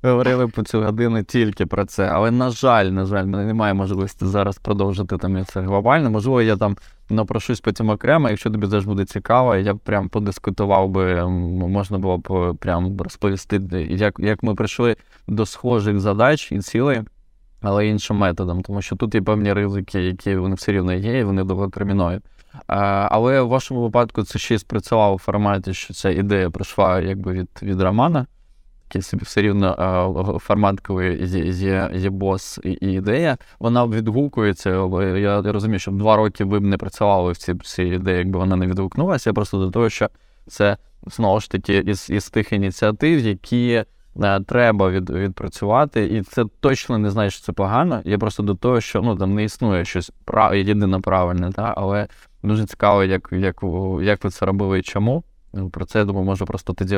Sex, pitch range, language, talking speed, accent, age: male, 95-110 Hz, Ukrainian, 185 wpm, native, 20-39